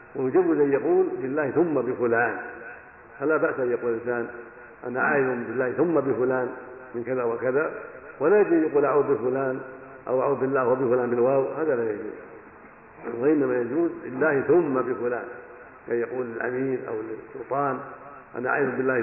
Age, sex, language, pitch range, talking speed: 50-69, male, Arabic, 130-195 Hz, 140 wpm